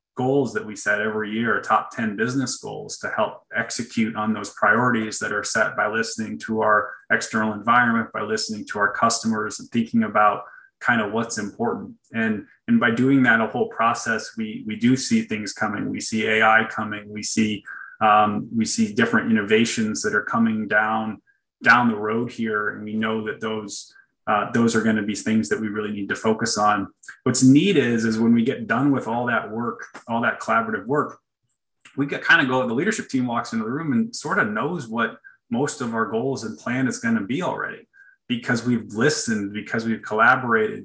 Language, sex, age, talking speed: English, male, 20-39, 205 wpm